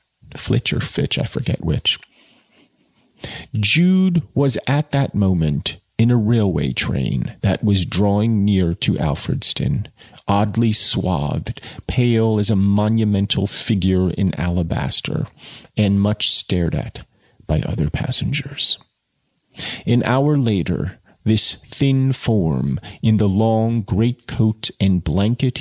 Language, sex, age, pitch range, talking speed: English, male, 40-59, 95-125 Hz, 115 wpm